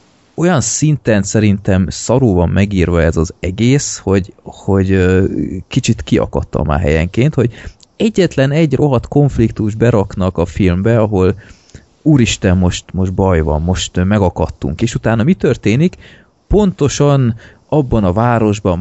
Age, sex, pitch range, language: 30-49, male, 90-115 Hz, Hungarian